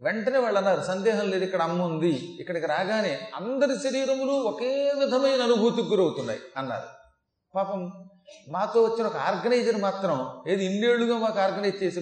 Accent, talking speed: native, 135 wpm